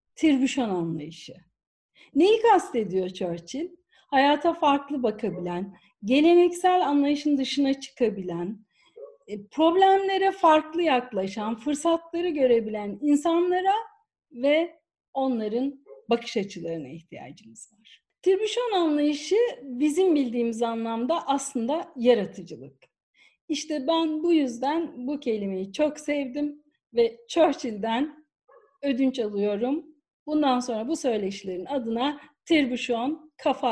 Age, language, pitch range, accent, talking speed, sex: 50-69, Turkish, 225-325 Hz, native, 90 wpm, female